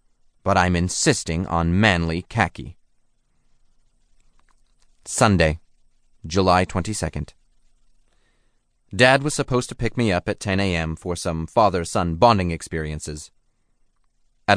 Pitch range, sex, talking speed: 85-115 Hz, male, 105 wpm